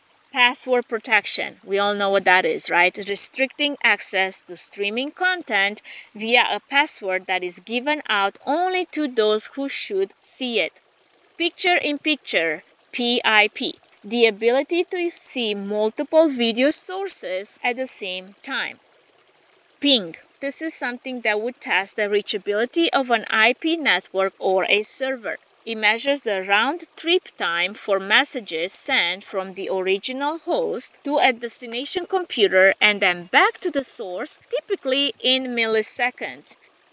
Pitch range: 205-290 Hz